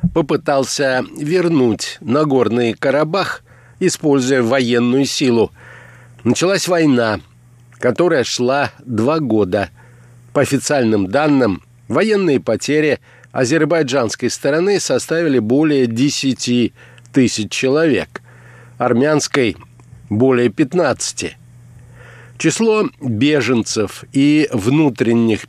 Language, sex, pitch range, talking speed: Russian, male, 120-150 Hz, 75 wpm